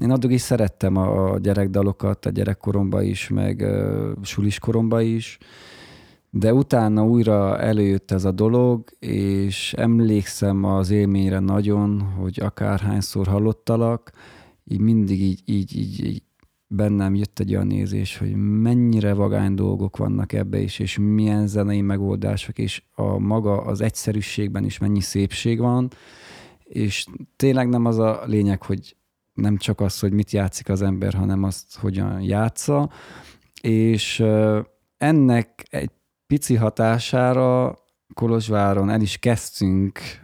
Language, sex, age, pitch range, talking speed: Hungarian, male, 20-39, 100-115 Hz, 130 wpm